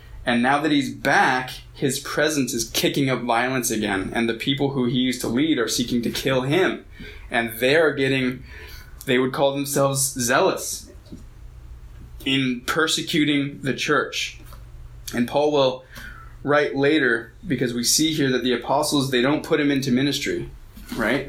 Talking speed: 160 wpm